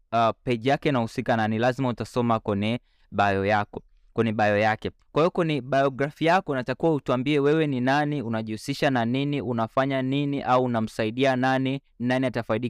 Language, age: Swahili, 20-39